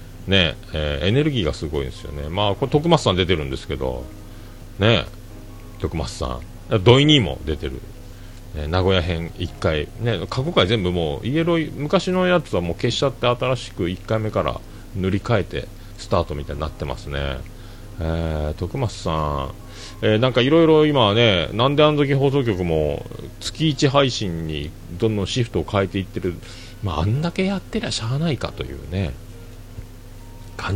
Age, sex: 40-59, male